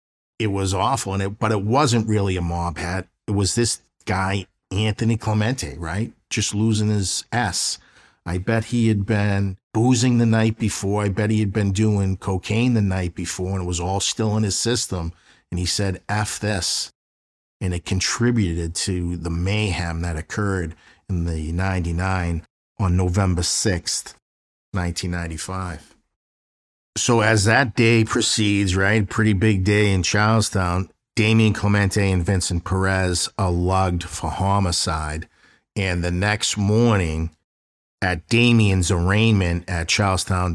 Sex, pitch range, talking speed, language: male, 90-110 Hz, 145 wpm, English